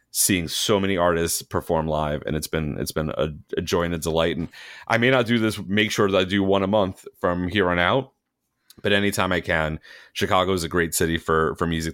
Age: 30-49